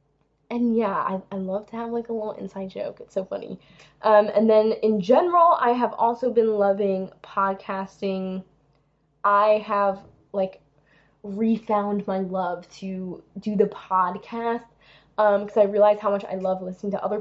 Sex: female